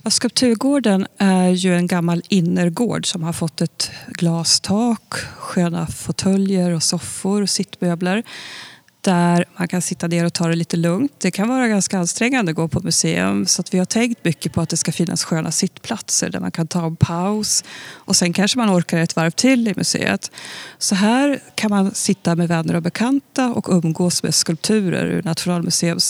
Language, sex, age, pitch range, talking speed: Swedish, female, 30-49, 165-190 Hz, 185 wpm